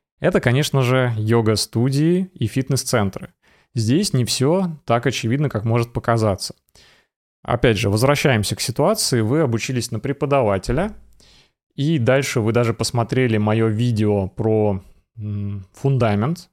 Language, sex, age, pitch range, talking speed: Russian, male, 20-39, 110-140 Hz, 115 wpm